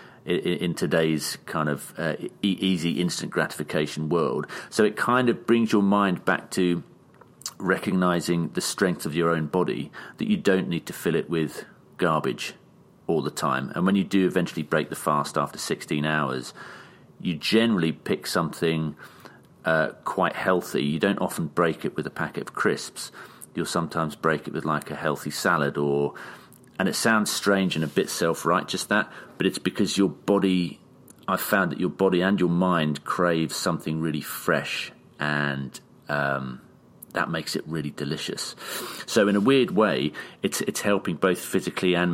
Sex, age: male, 40-59